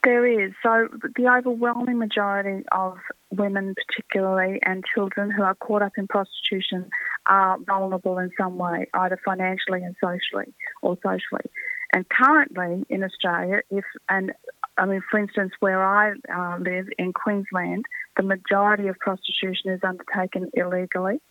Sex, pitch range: female, 185-210 Hz